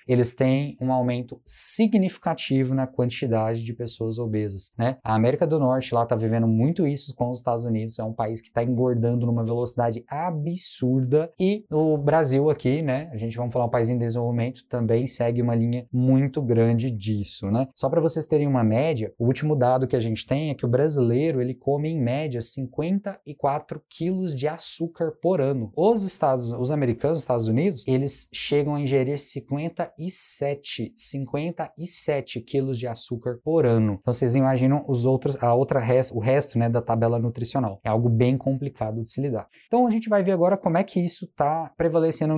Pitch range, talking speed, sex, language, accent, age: 120-155 Hz, 185 wpm, male, Portuguese, Brazilian, 20-39